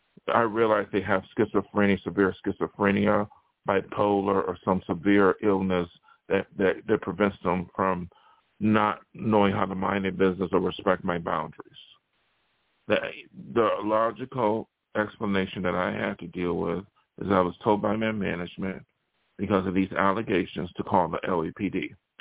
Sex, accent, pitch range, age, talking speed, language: male, American, 95-110 Hz, 50-69, 145 wpm, English